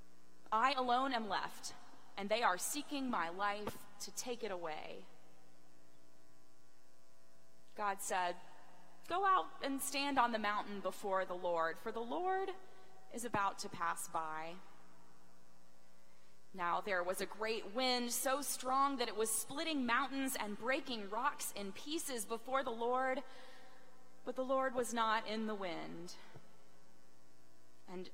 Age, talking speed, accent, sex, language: 30-49, 135 wpm, American, female, English